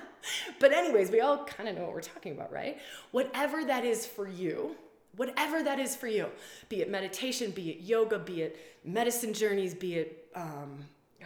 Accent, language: American, English